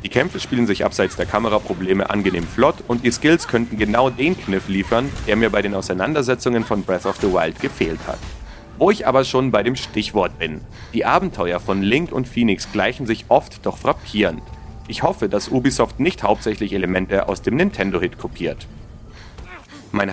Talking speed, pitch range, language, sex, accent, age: 180 wpm, 100-125 Hz, German, male, German, 30-49